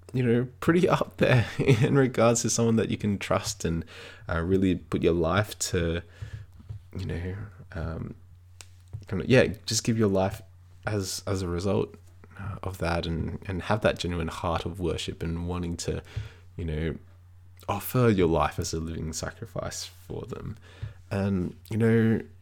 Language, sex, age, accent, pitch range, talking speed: English, male, 20-39, Australian, 90-110 Hz, 165 wpm